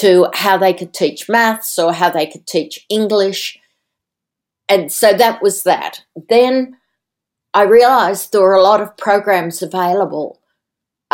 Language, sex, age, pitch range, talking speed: English, female, 60-79, 170-200 Hz, 150 wpm